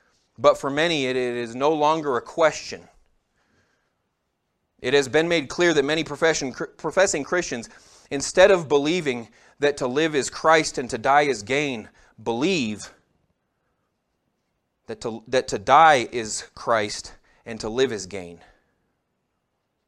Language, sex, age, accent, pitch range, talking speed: English, male, 30-49, American, 115-150 Hz, 130 wpm